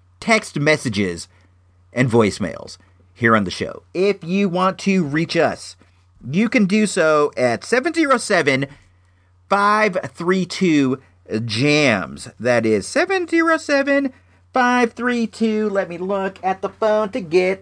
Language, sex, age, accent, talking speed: English, male, 40-59, American, 105 wpm